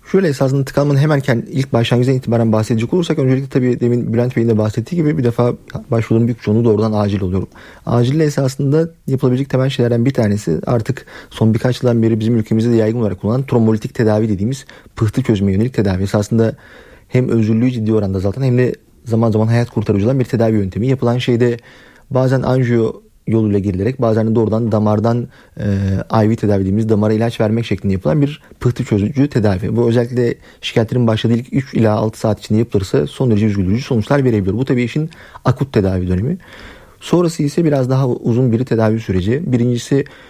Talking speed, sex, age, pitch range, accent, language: 175 wpm, male, 40-59, 110-125 Hz, native, Turkish